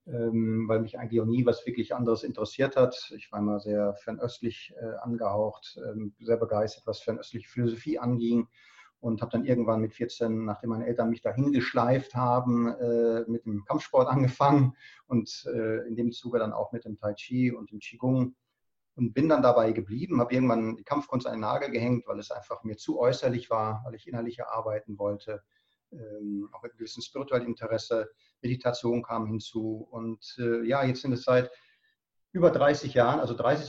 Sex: male